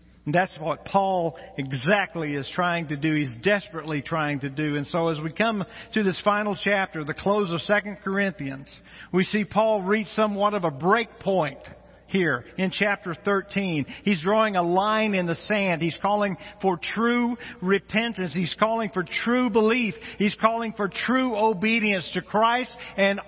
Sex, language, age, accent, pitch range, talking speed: male, English, 50-69, American, 155-220 Hz, 170 wpm